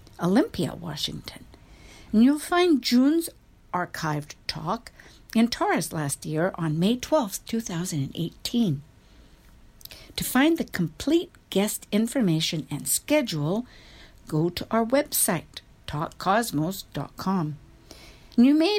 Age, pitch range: 60-79, 155-235 Hz